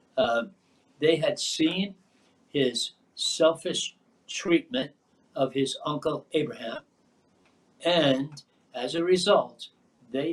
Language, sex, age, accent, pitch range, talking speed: English, male, 60-79, American, 130-200 Hz, 95 wpm